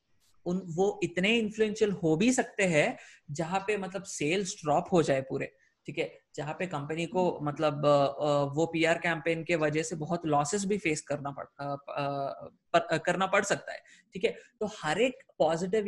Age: 30-49